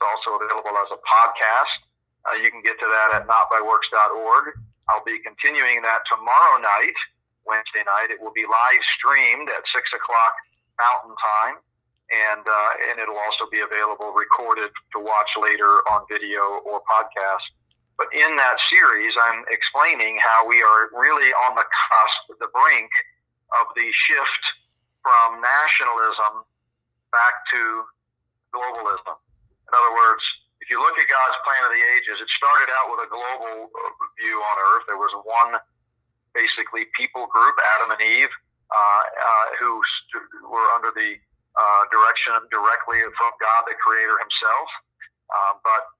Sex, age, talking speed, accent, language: male, 40-59, 150 wpm, American, English